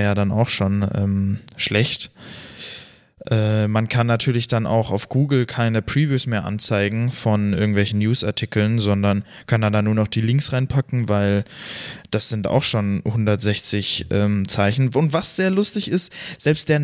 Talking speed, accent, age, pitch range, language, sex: 160 wpm, German, 20-39, 105-130 Hz, German, male